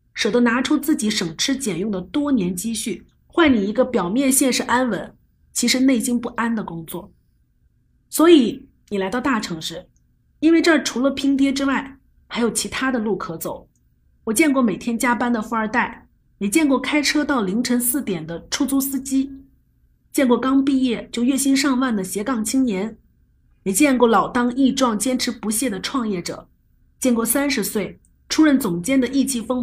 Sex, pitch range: female, 200-270 Hz